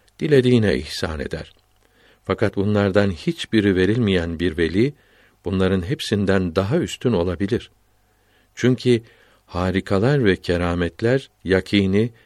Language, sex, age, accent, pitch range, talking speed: Turkish, male, 60-79, native, 90-115 Hz, 95 wpm